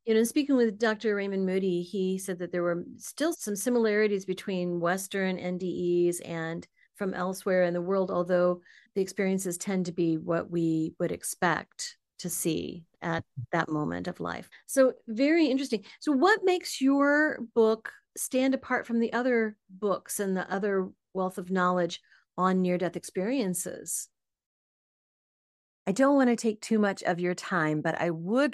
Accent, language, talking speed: American, English, 160 wpm